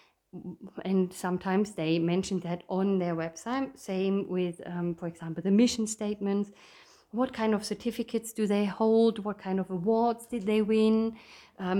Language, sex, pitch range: English, female, 190-240 Hz